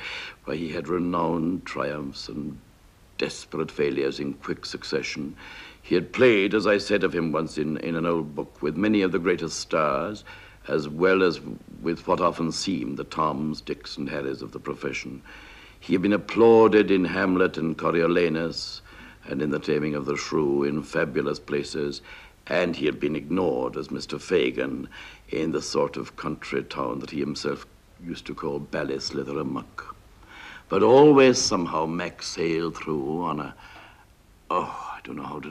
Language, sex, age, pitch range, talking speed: English, male, 60-79, 80-105 Hz, 165 wpm